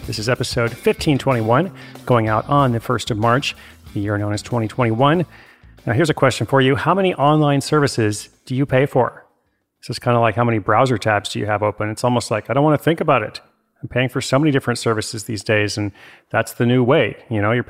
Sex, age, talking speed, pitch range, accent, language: male, 40-59, 235 wpm, 105-130 Hz, American, English